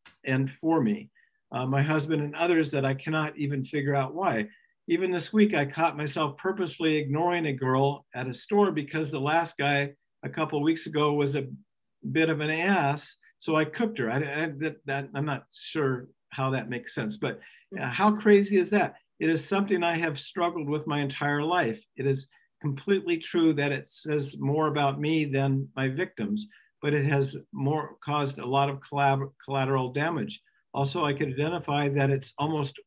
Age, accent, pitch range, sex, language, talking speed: 50-69, American, 140-165 Hz, male, English, 185 wpm